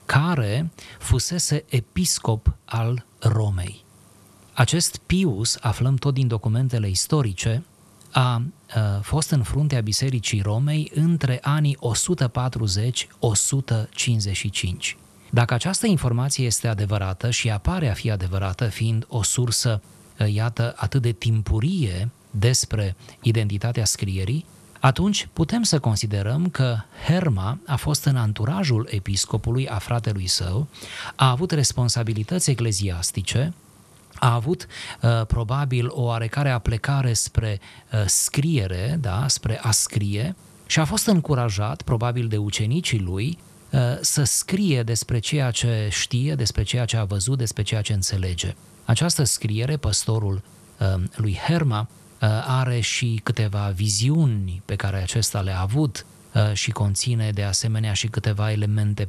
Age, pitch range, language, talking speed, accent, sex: 30-49, 105-135 Hz, Romanian, 120 wpm, native, male